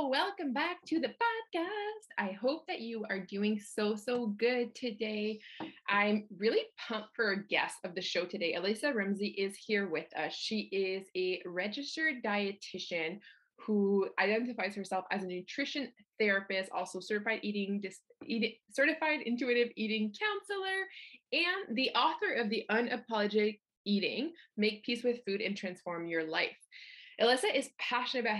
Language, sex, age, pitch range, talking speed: English, female, 20-39, 190-250 Hz, 145 wpm